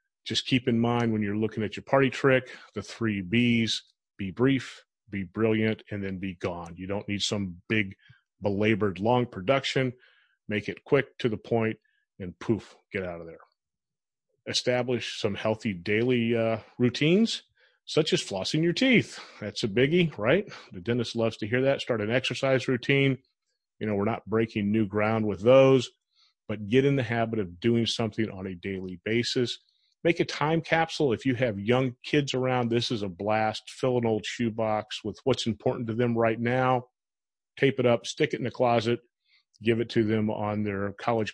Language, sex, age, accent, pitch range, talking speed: English, male, 30-49, American, 105-125 Hz, 185 wpm